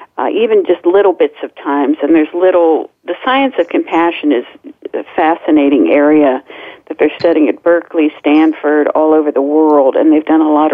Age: 50-69